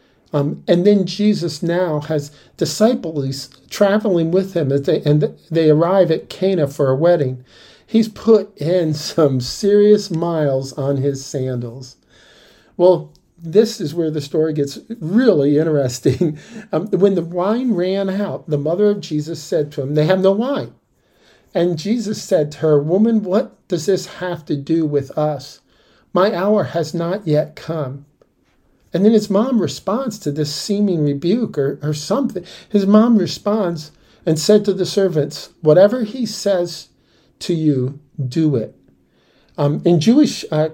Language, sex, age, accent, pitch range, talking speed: English, male, 50-69, American, 150-195 Hz, 155 wpm